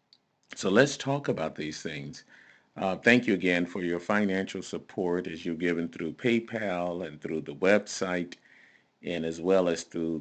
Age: 50-69